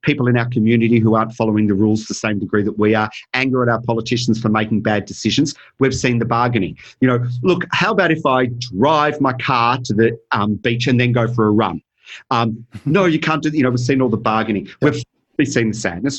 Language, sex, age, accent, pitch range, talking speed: English, male, 40-59, Australian, 110-135 Hz, 235 wpm